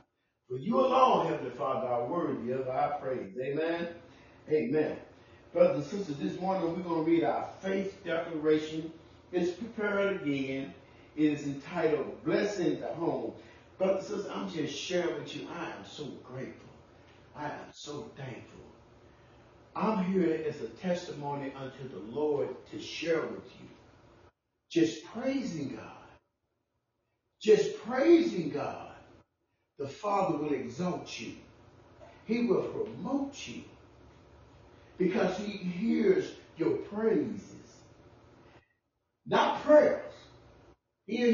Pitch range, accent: 140-230 Hz, American